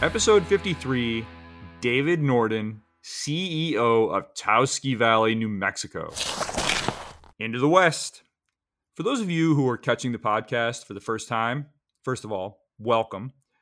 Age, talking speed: 30-49, 130 wpm